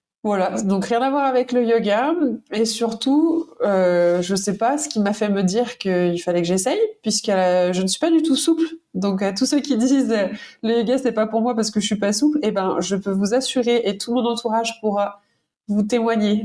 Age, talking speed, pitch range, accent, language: 20-39, 245 wpm, 190-245 Hz, French, French